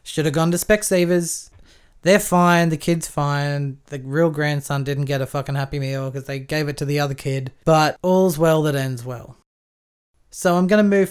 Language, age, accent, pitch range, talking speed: English, 20-39, Australian, 140-175 Hz, 200 wpm